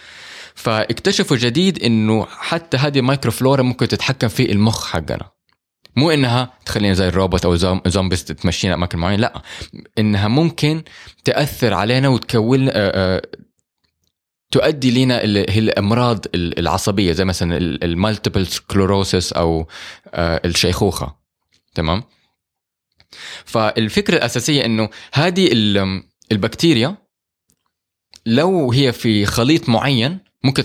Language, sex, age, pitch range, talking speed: Arabic, male, 20-39, 95-125 Hz, 95 wpm